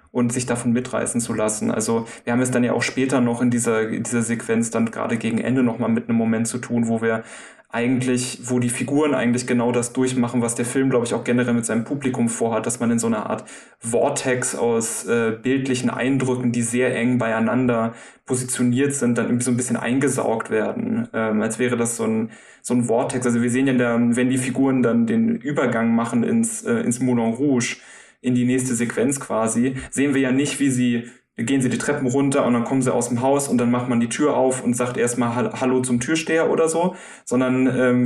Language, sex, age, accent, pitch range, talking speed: German, male, 20-39, German, 120-130 Hz, 220 wpm